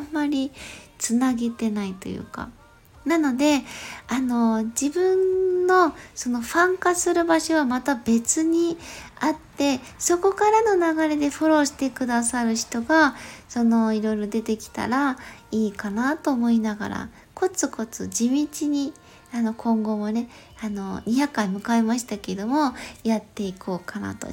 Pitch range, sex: 210-285 Hz, female